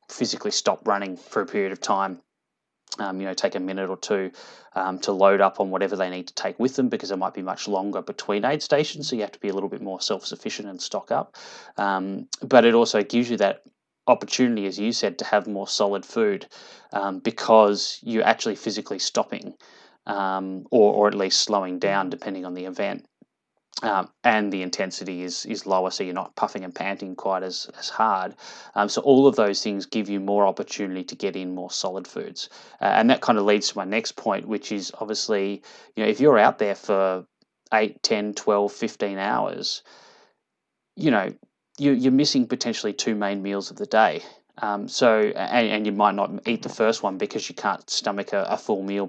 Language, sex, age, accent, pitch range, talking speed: English, male, 20-39, Australian, 95-115 Hz, 210 wpm